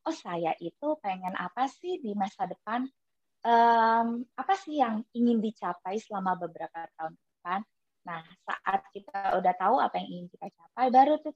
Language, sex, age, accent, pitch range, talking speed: Indonesian, female, 20-39, native, 190-255 Hz, 165 wpm